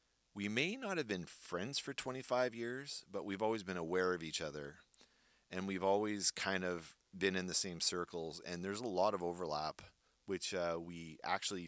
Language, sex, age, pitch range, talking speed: English, male, 30-49, 80-95 Hz, 190 wpm